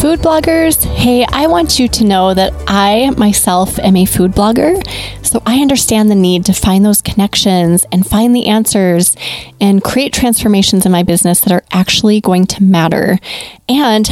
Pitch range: 185-235 Hz